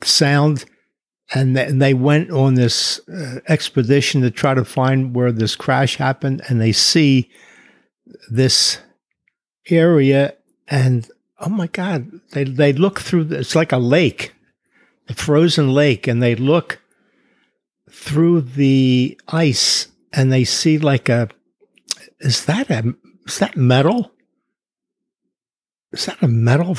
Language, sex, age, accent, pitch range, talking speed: English, male, 60-79, American, 125-155 Hz, 130 wpm